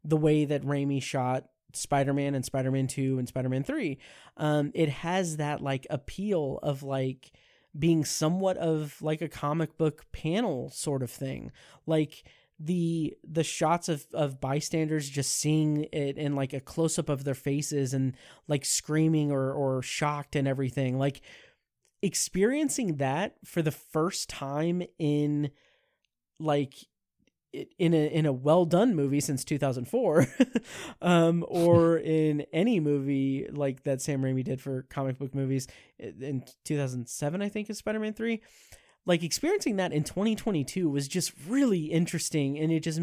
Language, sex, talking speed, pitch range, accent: English, male, 155 wpm, 140-170 Hz, American